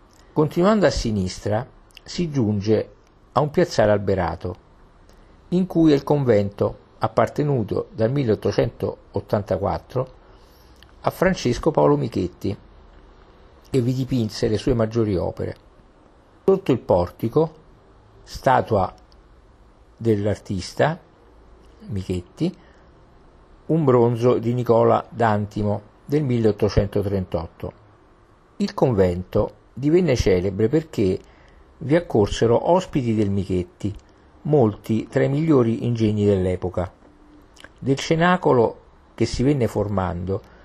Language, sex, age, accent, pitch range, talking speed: Italian, male, 50-69, native, 90-125 Hz, 95 wpm